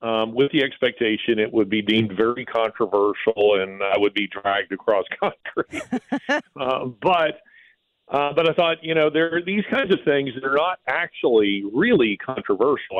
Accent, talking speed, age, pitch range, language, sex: American, 170 wpm, 50-69, 105-145 Hz, English, male